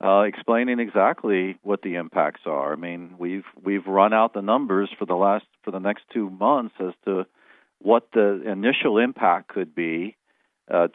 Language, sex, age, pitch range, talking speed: English, male, 50-69, 95-110 Hz, 175 wpm